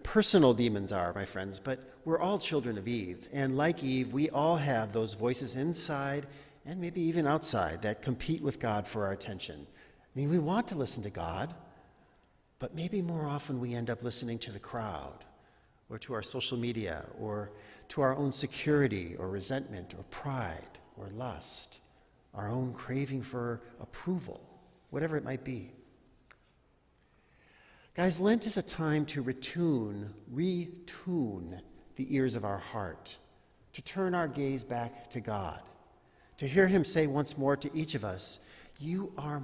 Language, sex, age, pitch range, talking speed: English, male, 50-69, 110-150 Hz, 165 wpm